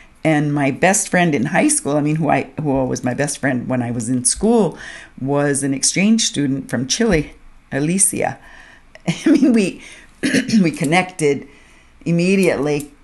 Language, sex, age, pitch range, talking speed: English, female, 50-69, 135-175 Hz, 155 wpm